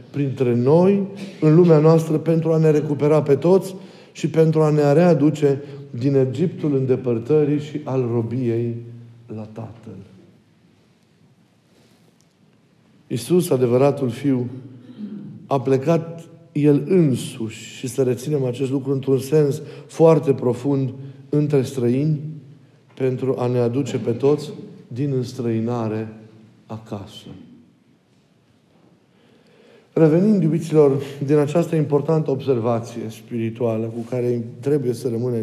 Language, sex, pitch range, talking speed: Romanian, male, 125-160 Hz, 105 wpm